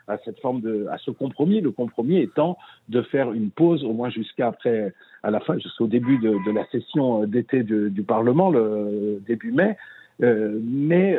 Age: 60-79